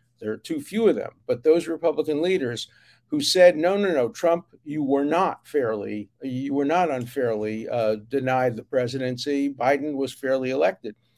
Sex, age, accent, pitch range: male, 50-69, American, 120-170 Hz